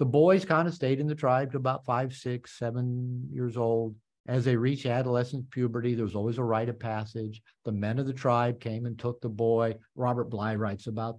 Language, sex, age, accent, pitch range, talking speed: English, male, 50-69, American, 110-130 Hz, 215 wpm